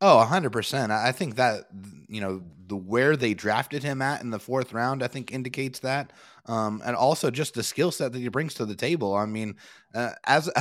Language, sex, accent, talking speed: English, male, American, 220 wpm